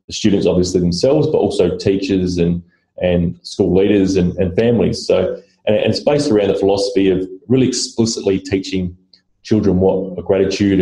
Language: English